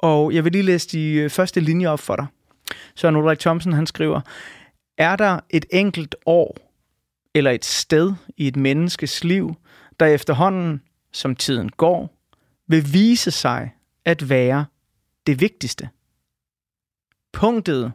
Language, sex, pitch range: Danish, male, 145-185 Hz